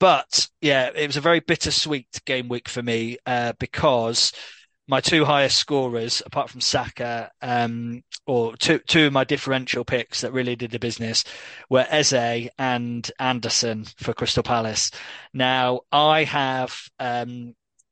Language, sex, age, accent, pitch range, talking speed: English, male, 20-39, British, 120-135 Hz, 145 wpm